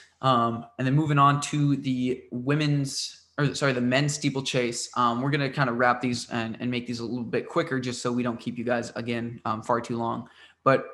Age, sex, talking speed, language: 20-39, male, 230 wpm, English